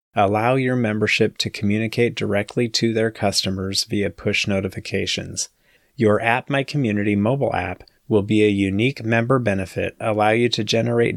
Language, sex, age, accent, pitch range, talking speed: English, male, 30-49, American, 105-140 Hz, 150 wpm